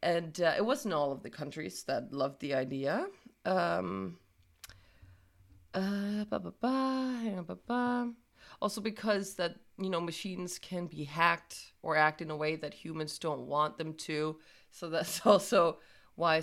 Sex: female